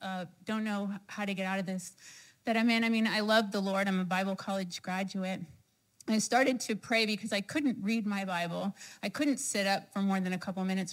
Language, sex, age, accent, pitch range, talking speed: English, female, 30-49, American, 195-235 Hz, 235 wpm